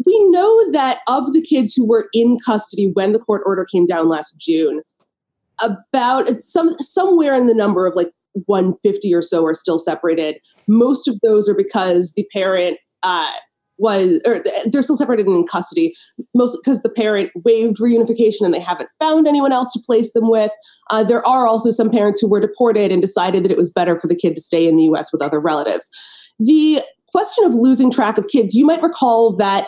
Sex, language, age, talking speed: female, English, 30-49, 210 wpm